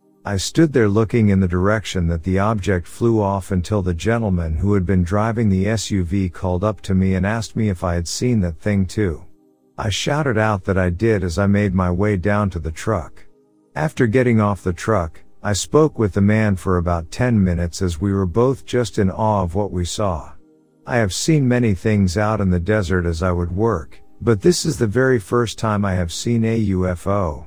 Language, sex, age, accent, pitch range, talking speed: English, male, 50-69, American, 90-110 Hz, 220 wpm